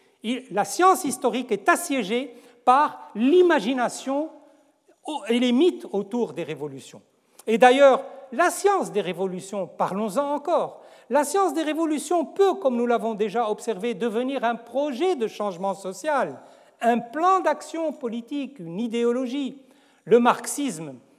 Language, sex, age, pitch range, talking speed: French, male, 60-79, 210-300 Hz, 125 wpm